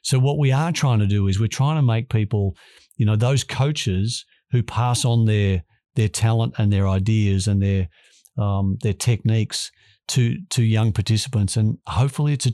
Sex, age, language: male, 50-69, English